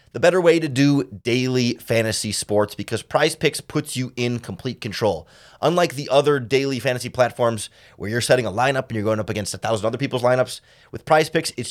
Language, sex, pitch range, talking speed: English, male, 110-140 Hz, 210 wpm